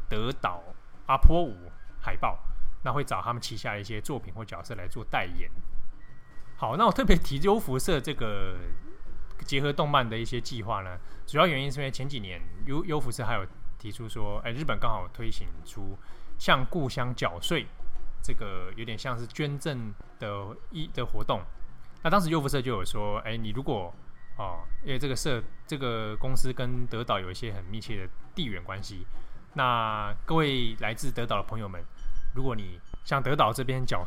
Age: 20-39